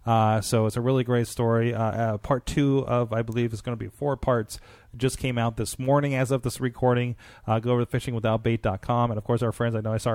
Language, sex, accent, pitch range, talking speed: English, male, American, 115-135 Hz, 255 wpm